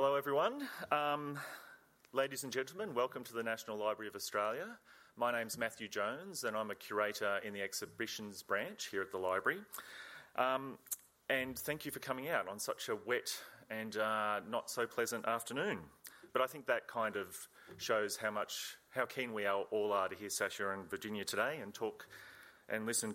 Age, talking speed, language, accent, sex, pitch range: 30-49, 185 wpm, English, Australian, male, 100-125 Hz